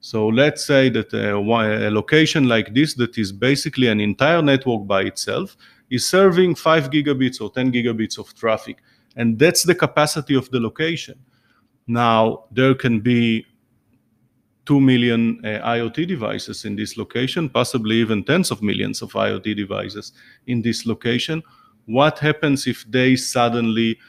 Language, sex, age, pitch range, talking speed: English, male, 30-49, 110-135 Hz, 150 wpm